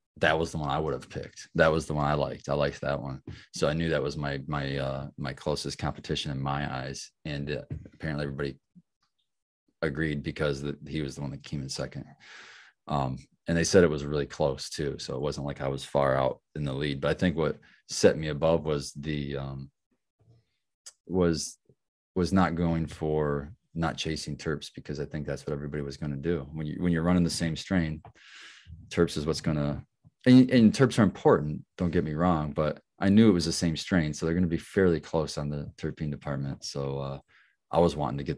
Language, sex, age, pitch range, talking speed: English, male, 30-49, 70-85 Hz, 225 wpm